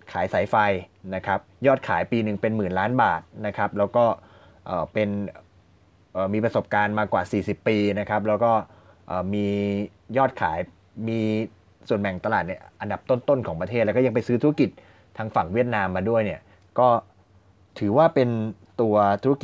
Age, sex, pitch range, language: 20-39, male, 95-115 Hz, Thai